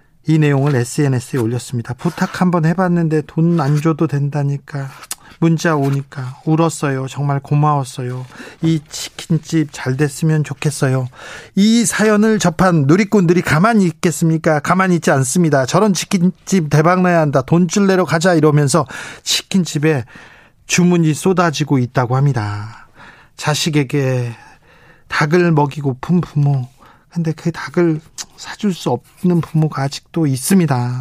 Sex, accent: male, native